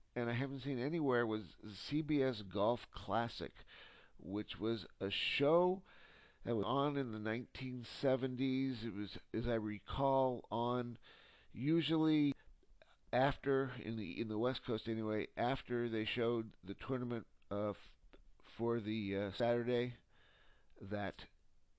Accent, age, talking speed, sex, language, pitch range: American, 50-69, 125 wpm, male, English, 105-125 Hz